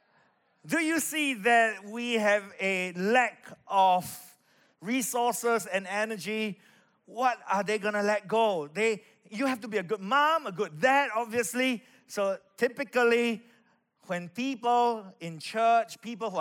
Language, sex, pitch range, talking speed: English, male, 195-240 Hz, 145 wpm